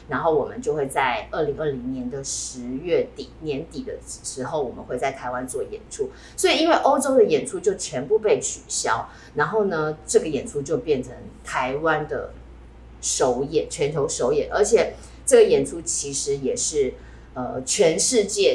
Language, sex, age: Chinese, female, 20-39